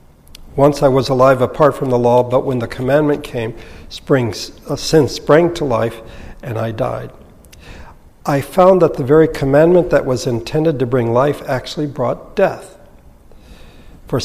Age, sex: 60-79, male